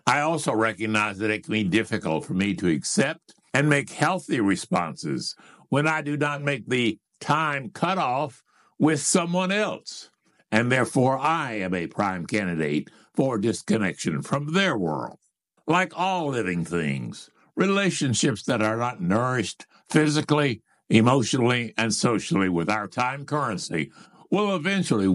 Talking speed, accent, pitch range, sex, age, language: 140 wpm, American, 105-150 Hz, male, 60-79, English